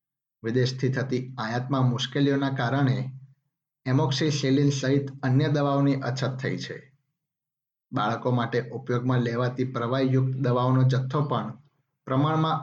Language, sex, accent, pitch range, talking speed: Gujarati, male, native, 130-140 Hz, 95 wpm